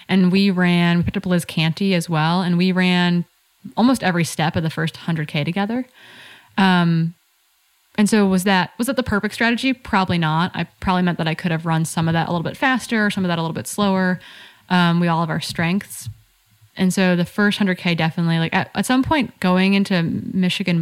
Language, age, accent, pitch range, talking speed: English, 20-39, American, 165-195 Hz, 215 wpm